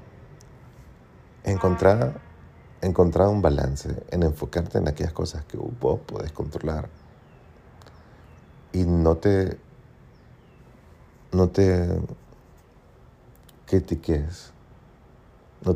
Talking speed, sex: 75 wpm, male